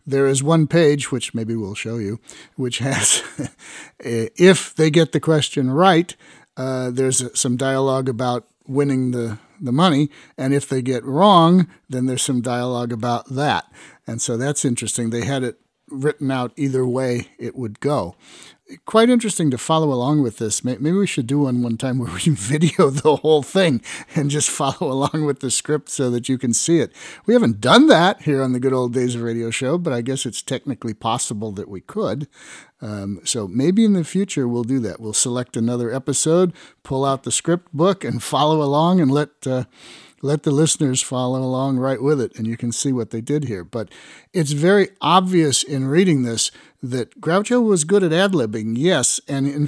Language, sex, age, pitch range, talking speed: English, male, 50-69, 125-155 Hz, 195 wpm